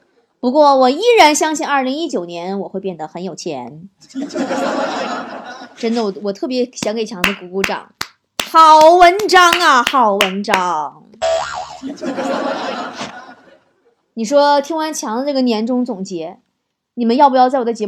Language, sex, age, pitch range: Chinese, female, 20-39, 220-315 Hz